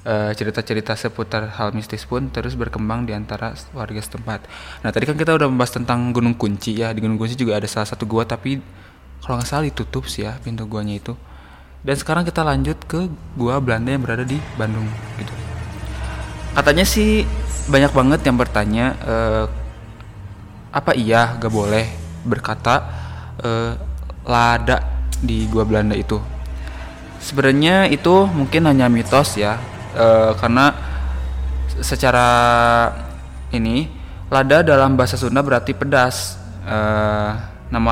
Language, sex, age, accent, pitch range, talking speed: Indonesian, male, 20-39, native, 105-125 Hz, 140 wpm